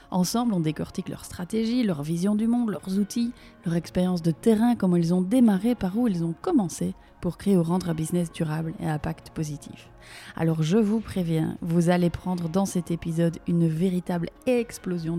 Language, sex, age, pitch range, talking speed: French, female, 30-49, 165-190 Hz, 190 wpm